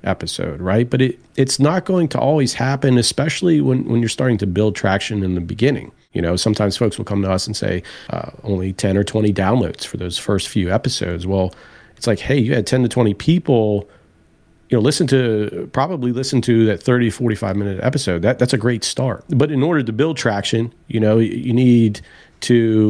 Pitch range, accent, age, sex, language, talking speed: 100-130 Hz, American, 40-59, male, English, 210 wpm